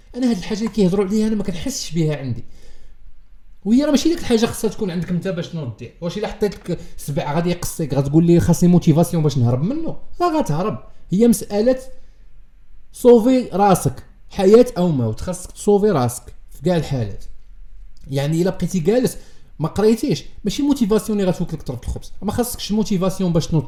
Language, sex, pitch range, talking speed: Arabic, male, 140-205 Hz, 170 wpm